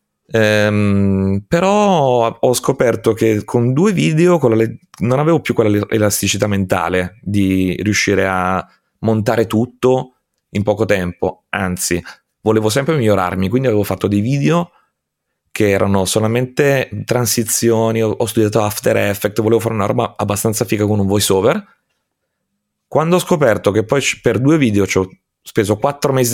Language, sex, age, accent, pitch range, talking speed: Italian, male, 30-49, native, 95-120 Hz, 145 wpm